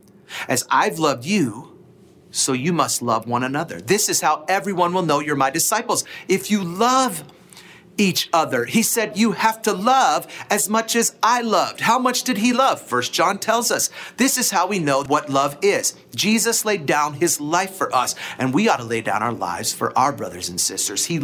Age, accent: 40-59, American